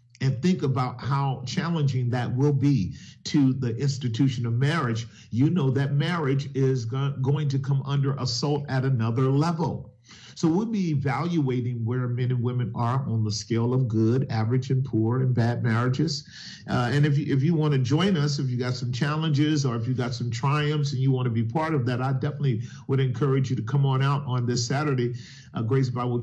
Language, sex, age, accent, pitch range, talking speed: English, male, 40-59, American, 120-140 Hz, 205 wpm